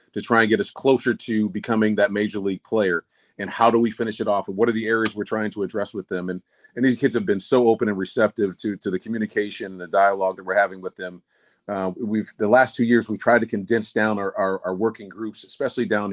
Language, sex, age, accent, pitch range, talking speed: English, male, 30-49, American, 100-115 Hz, 260 wpm